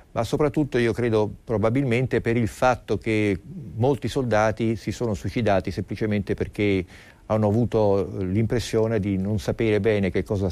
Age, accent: 50-69, native